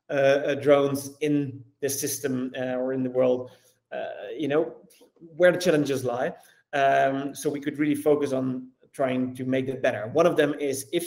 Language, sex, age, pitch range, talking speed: English, male, 30-49, 130-150 Hz, 190 wpm